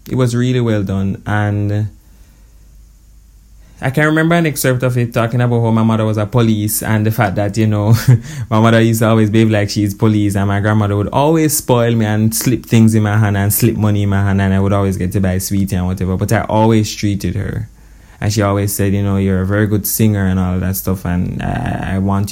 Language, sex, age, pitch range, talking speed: English, male, 20-39, 100-120 Hz, 240 wpm